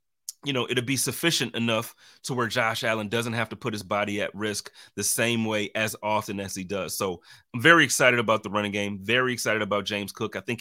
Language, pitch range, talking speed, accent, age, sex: English, 110-130 Hz, 230 wpm, American, 30-49, male